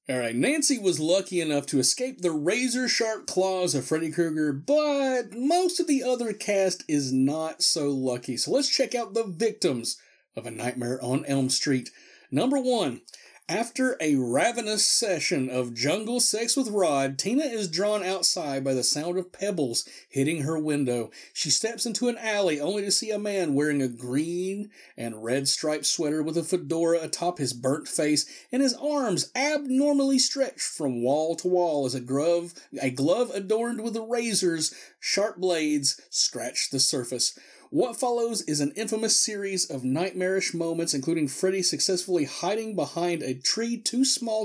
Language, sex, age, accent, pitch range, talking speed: English, male, 40-59, American, 140-220 Hz, 165 wpm